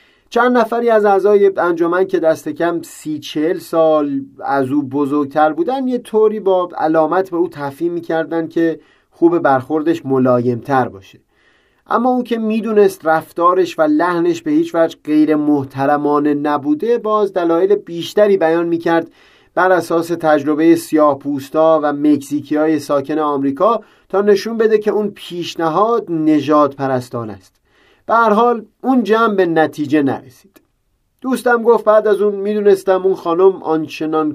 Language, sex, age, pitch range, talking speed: Persian, male, 30-49, 150-210 Hz, 140 wpm